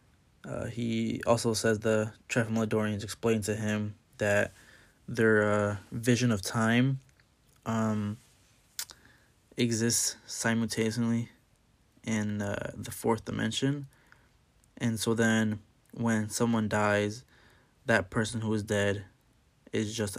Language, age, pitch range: English, 20-39, 105-115 Hz